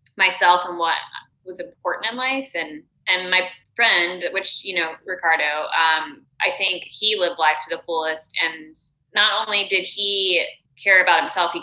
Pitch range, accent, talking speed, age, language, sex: 160-180 Hz, American, 170 wpm, 10-29, English, female